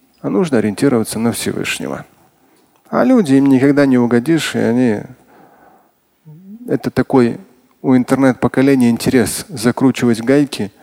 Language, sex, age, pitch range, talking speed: Russian, male, 20-39, 115-145 Hz, 115 wpm